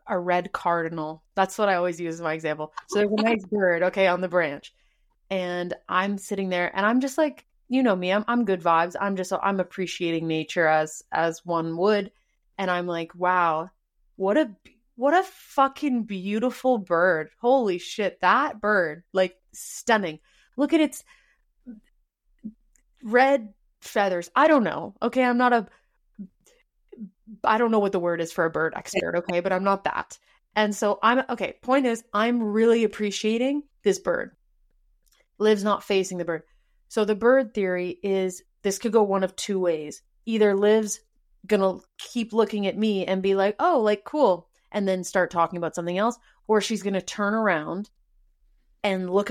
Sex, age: female, 30-49